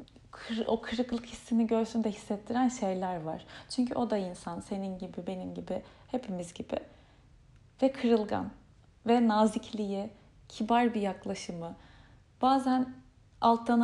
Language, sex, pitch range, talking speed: Turkish, female, 200-245 Hz, 115 wpm